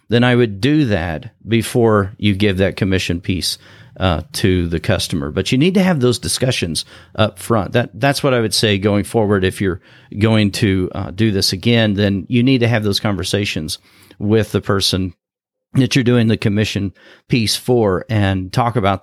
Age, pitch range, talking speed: 40-59, 95-125 Hz, 185 wpm